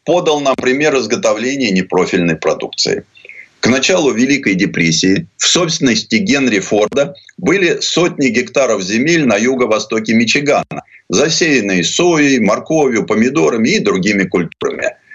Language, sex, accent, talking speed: Russian, male, native, 110 wpm